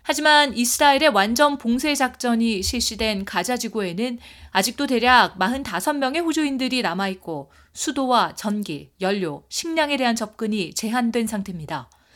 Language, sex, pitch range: Korean, female, 180-255 Hz